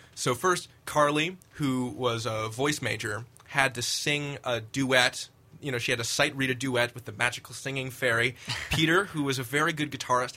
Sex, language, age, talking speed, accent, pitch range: male, English, 20-39, 195 wpm, American, 120-155 Hz